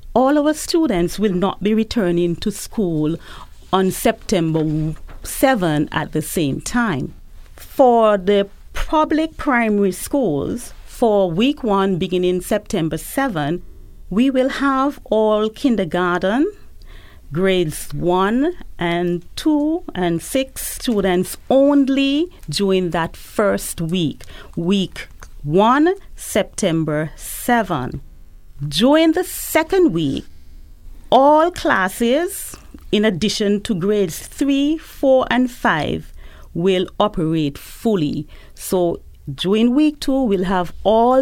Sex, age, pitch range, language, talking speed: female, 40-59, 170-255 Hz, English, 105 wpm